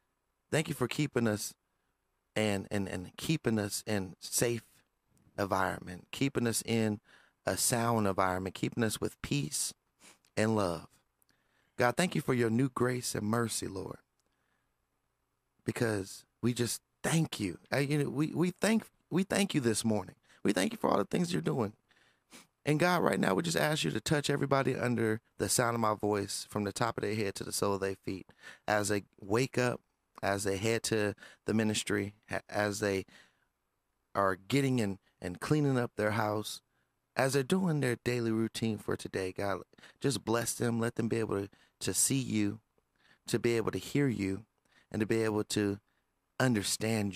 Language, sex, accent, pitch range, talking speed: English, male, American, 100-130 Hz, 180 wpm